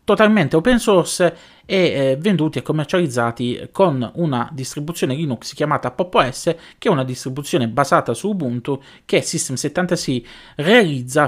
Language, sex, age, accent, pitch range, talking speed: Italian, male, 30-49, native, 130-185 Hz, 130 wpm